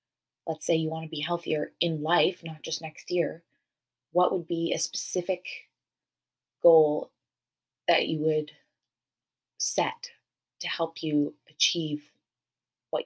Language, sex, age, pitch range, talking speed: English, female, 20-39, 145-175 Hz, 130 wpm